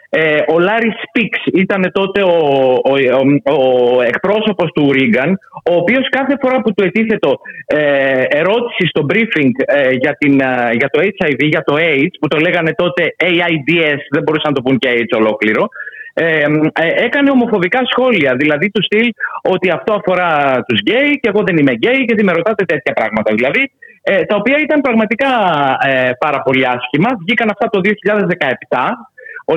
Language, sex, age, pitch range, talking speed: Greek, male, 30-49, 150-225 Hz, 170 wpm